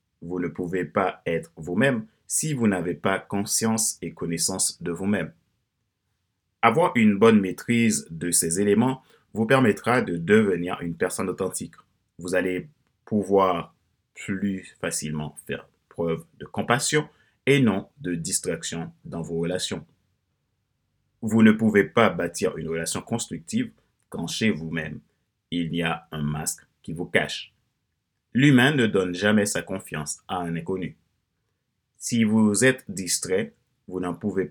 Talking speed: 140 wpm